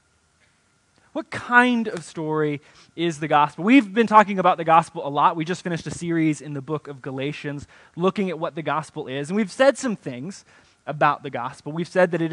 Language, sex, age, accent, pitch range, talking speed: English, male, 20-39, American, 150-200 Hz, 210 wpm